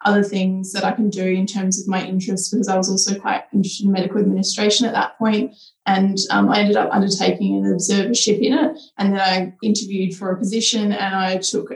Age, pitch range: 20-39, 190-210 Hz